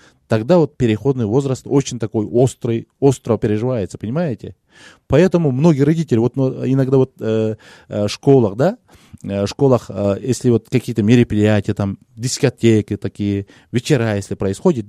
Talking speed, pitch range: 135 wpm, 110-170 Hz